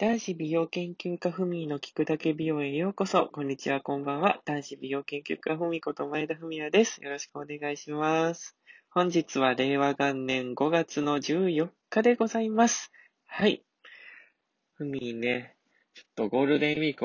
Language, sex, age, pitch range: Japanese, male, 20-39, 125-165 Hz